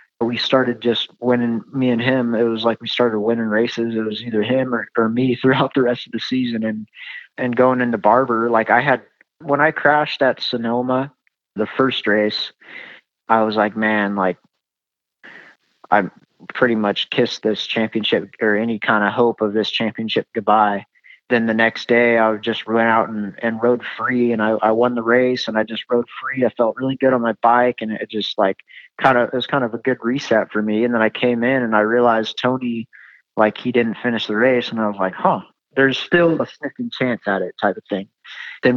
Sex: male